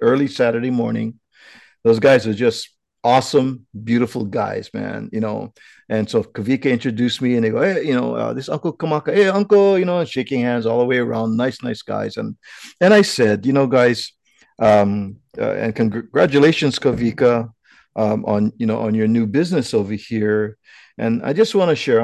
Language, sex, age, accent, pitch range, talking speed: English, male, 50-69, American, 110-125 Hz, 190 wpm